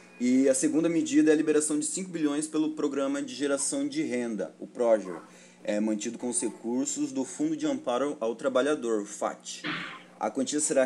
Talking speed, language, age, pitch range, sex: 190 wpm, Portuguese, 20-39, 105-145 Hz, male